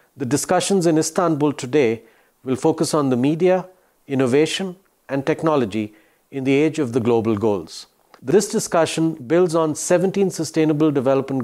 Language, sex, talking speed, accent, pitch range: Turkish, male, 140 wpm, Indian, 125-170 Hz